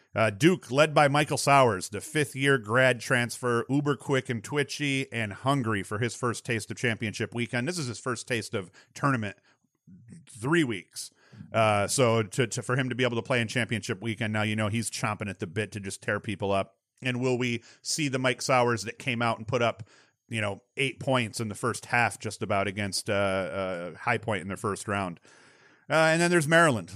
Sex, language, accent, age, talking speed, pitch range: male, English, American, 40-59, 215 wpm, 110-130 Hz